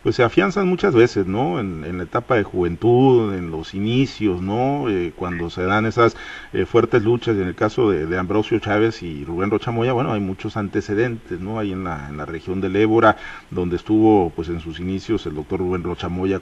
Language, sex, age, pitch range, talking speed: Spanish, male, 40-59, 90-115 Hz, 215 wpm